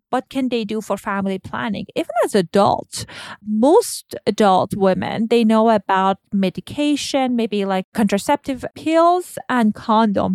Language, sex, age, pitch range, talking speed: English, female, 30-49, 195-250 Hz, 135 wpm